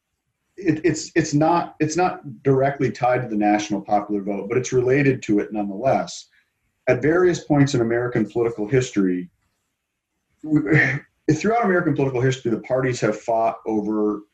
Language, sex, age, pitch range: English, male, 40-59, 105-130 Hz